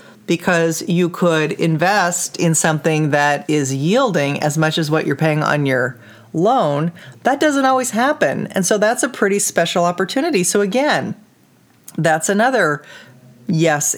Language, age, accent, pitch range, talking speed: English, 40-59, American, 155-210 Hz, 145 wpm